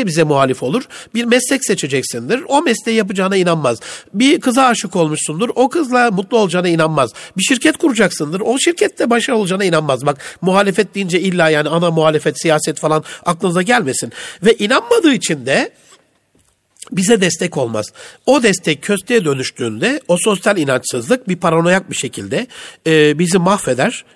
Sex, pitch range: male, 155-230 Hz